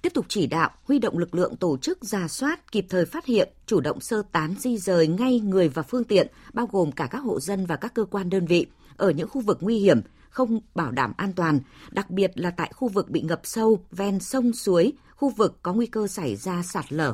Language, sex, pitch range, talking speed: Vietnamese, female, 165-235 Hz, 250 wpm